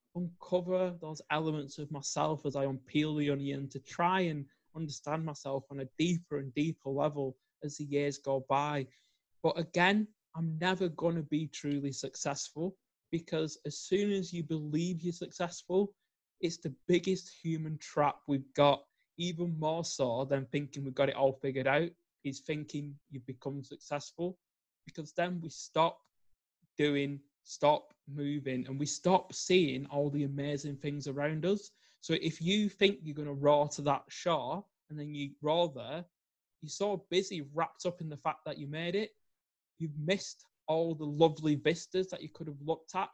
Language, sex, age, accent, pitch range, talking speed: English, male, 20-39, British, 145-175 Hz, 170 wpm